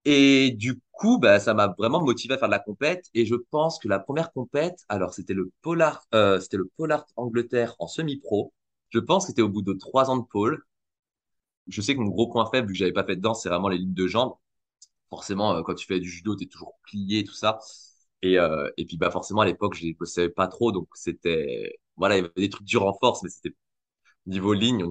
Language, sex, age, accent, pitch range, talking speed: French, male, 20-39, French, 95-130 Hz, 255 wpm